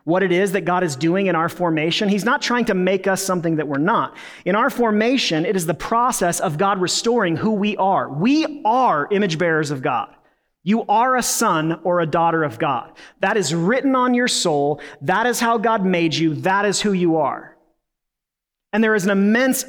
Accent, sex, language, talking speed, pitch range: American, male, English, 215 wpm, 160-215 Hz